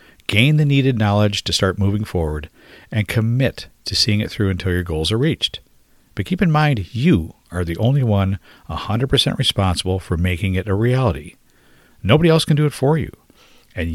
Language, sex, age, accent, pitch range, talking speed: English, male, 50-69, American, 90-125 Hz, 190 wpm